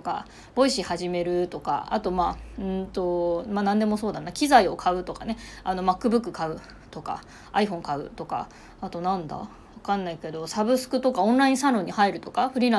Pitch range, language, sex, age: 185-285 Hz, Japanese, female, 20-39